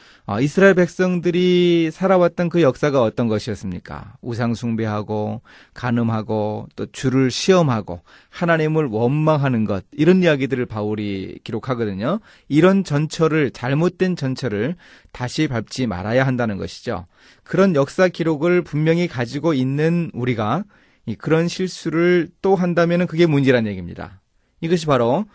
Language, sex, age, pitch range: Korean, male, 30-49, 115-170 Hz